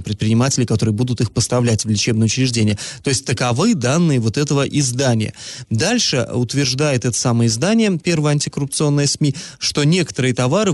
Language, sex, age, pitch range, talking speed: Russian, male, 20-39, 120-155 Hz, 145 wpm